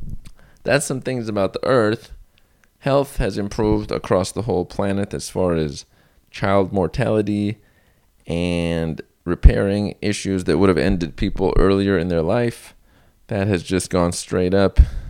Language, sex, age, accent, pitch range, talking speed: English, male, 20-39, American, 85-105 Hz, 145 wpm